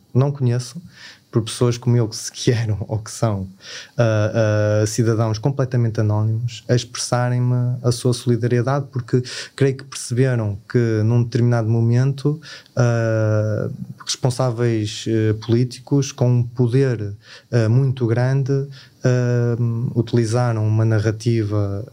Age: 20-39